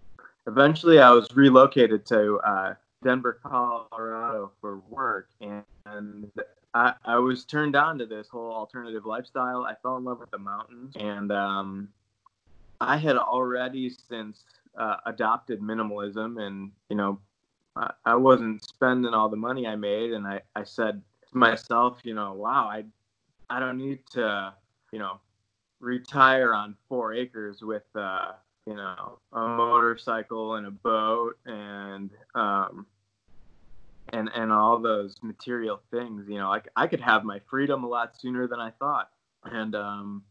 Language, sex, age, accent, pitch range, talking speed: English, male, 20-39, American, 105-125 Hz, 150 wpm